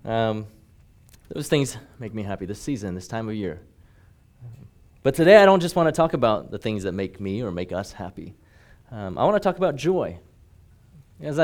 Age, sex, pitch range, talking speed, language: 30-49, male, 115-165 Hz, 200 wpm, English